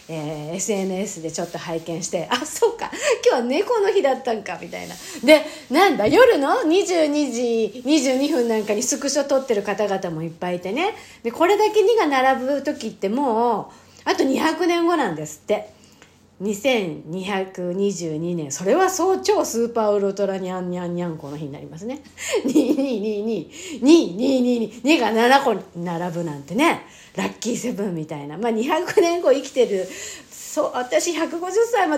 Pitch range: 200-310 Hz